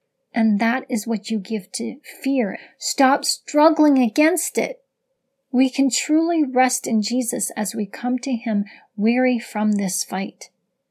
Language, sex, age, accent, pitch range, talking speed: English, female, 40-59, American, 210-265 Hz, 150 wpm